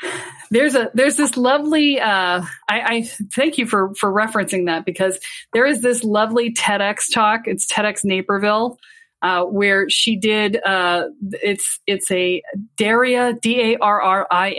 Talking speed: 155 wpm